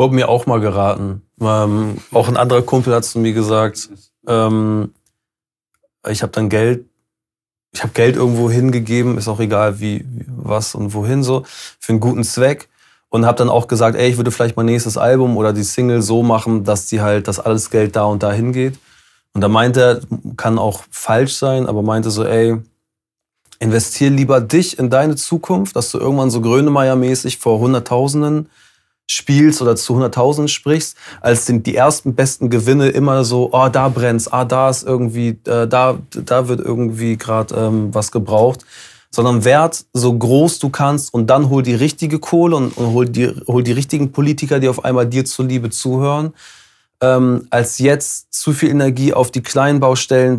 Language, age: German, 20-39